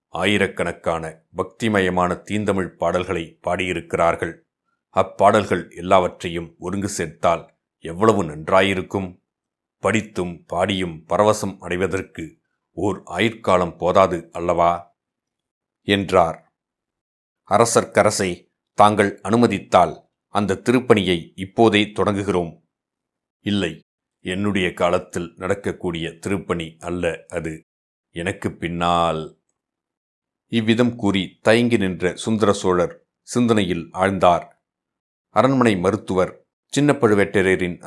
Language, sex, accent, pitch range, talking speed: Tamil, male, native, 90-110 Hz, 75 wpm